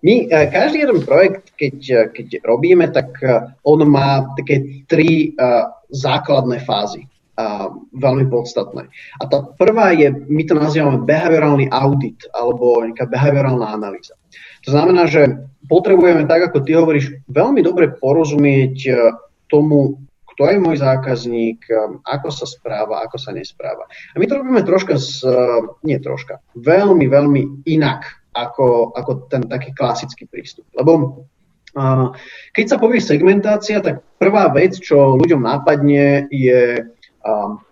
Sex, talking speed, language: male, 130 wpm, Slovak